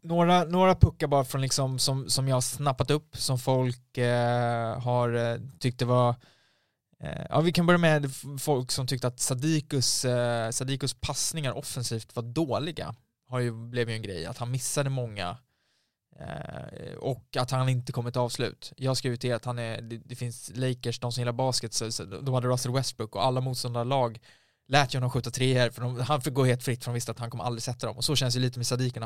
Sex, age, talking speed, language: male, 20-39, 215 wpm, Swedish